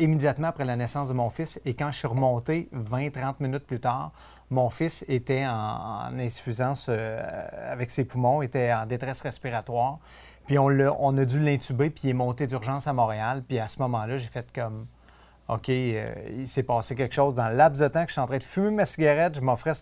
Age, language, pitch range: 30-49, French, 125-160 Hz